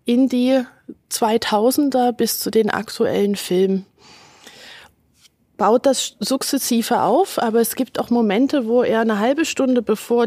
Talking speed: 135 wpm